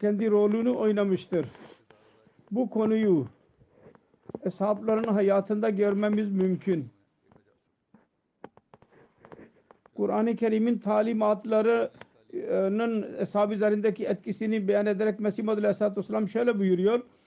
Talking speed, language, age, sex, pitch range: 75 wpm, Turkish, 50-69, male, 185-220 Hz